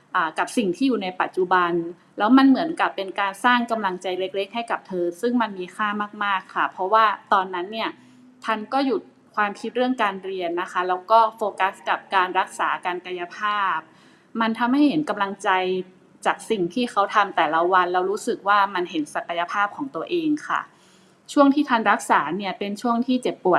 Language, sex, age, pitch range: Thai, female, 20-39, 185-235 Hz